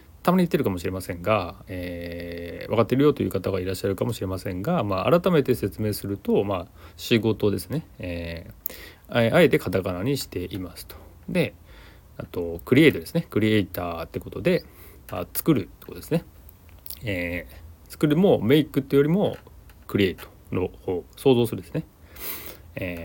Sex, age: male, 30-49